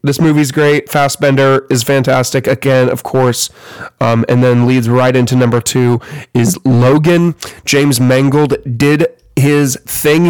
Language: English